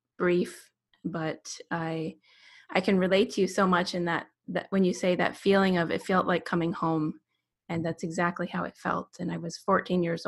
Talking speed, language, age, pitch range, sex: 205 wpm, English, 20-39, 170-195 Hz, female